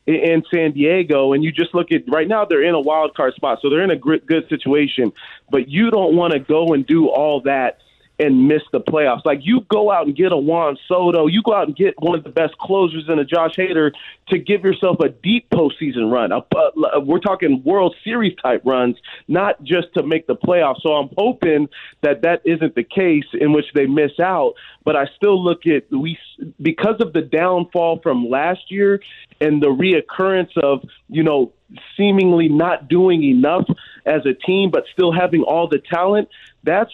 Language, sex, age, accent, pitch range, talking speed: English, male, 30-49, American, 145-180 Hz, 200 wpm